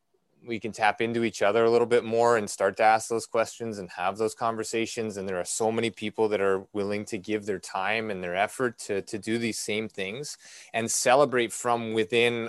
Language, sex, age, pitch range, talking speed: English, male, 20-39, 105-115 Hz, 220 wpm